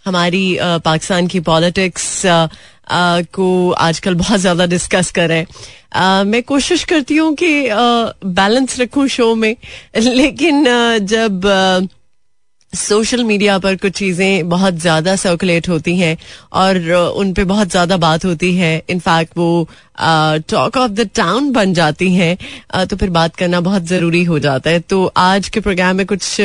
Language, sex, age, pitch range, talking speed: Hindi, female, 30-49, 175-210 Hz, 145 wpm